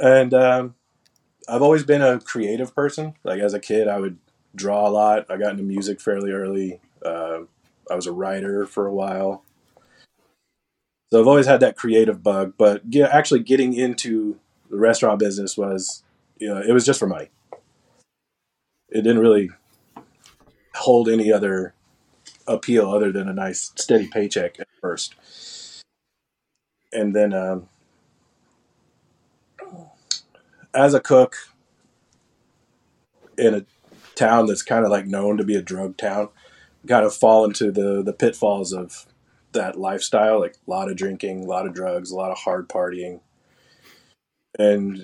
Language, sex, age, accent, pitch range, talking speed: English, male, 20-39, American, 95-125 Hz, 155 wpm